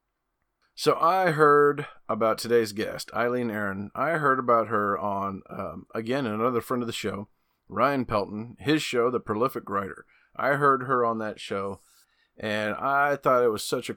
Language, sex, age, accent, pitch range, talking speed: English, male, 40-59, American, 105-130 Hz, 170 wpm